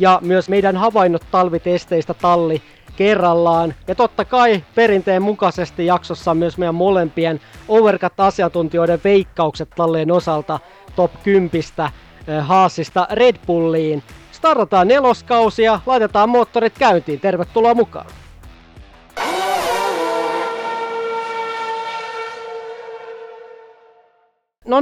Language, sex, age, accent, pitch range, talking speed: Finnish, male, 30-49, native, 170-220 Hz, 85 wpm